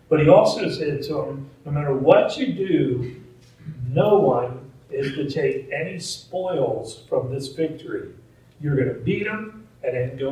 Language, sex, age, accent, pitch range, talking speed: English, male, 40-59, American, 125-155 Hz, 170 wpm